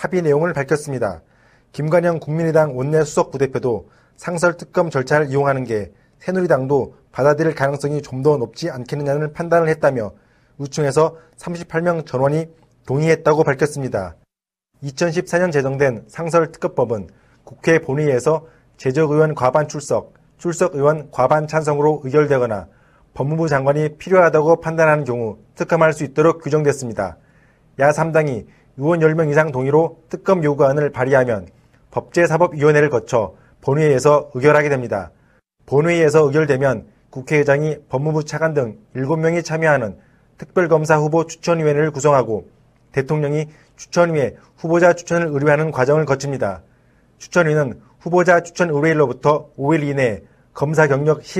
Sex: male